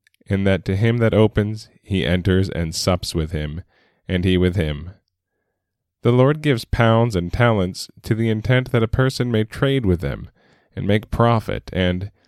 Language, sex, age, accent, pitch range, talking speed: English, male, 10-29, American, 90-110 Hz, 175 wpm